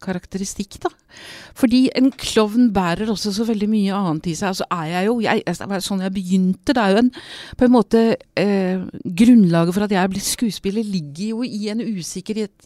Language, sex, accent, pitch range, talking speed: English, female, Swedish, 170-225 Hz, 190 wpm